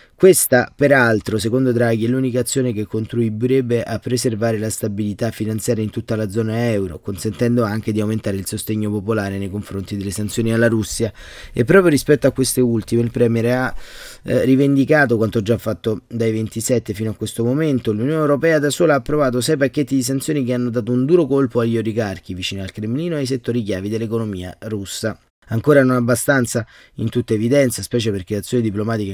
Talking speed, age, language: 185 wpm, 30-49, Italian